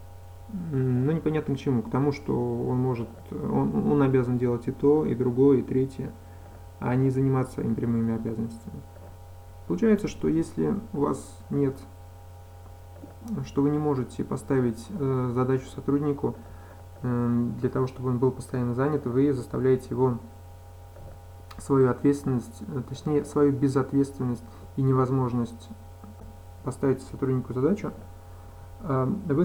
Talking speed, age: 125 wpm, 20-39